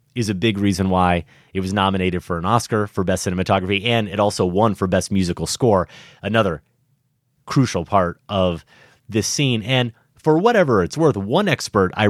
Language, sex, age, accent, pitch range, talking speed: English, male, 30-49, American, 95-130 Hz, 180 wpm